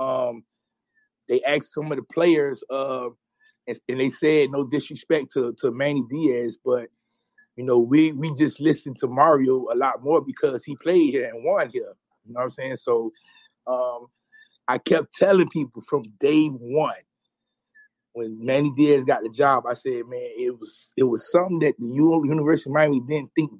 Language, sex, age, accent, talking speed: English, male, 30-49, American, 180 wpm